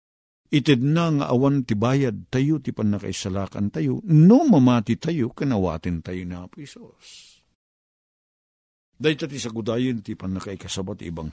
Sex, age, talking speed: male, 50-69, 125 wpm